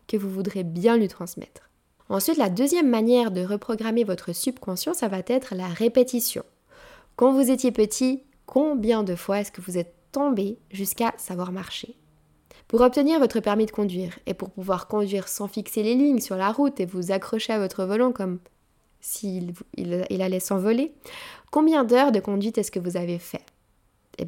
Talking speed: 175 wpm